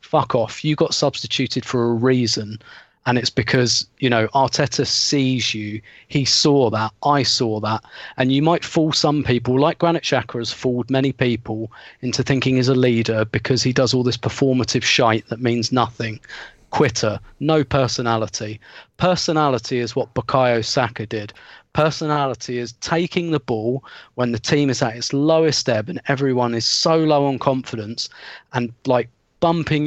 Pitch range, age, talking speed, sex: 115-140 Hz, 30-49, 165 wpm, male